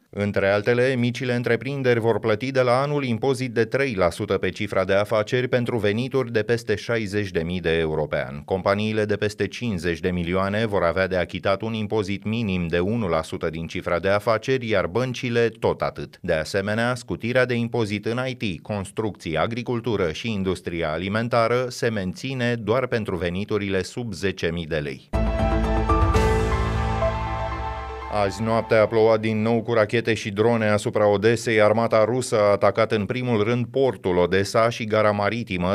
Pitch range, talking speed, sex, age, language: 95-115 Hz, 155 wpm, male, 30-49, Romanian